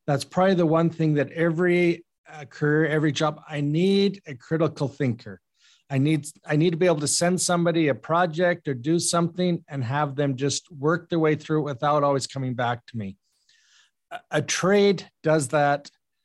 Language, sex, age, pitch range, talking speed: English, male, 40-59, 130-155 Hz, 180 wpm